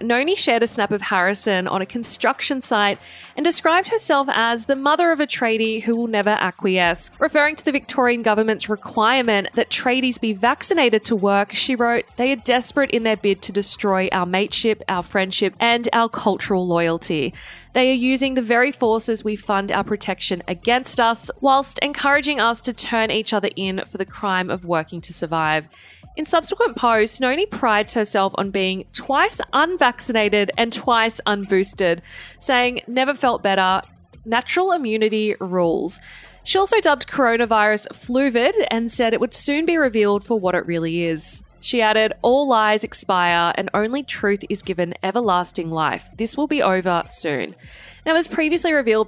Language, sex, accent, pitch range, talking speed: English, female, Australian, 195-255 Hz, 170 wpm